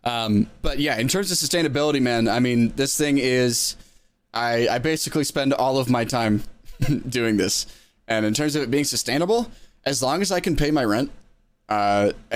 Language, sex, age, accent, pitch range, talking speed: English, male, 20-39, American, 110-130 Hz, 190 wpm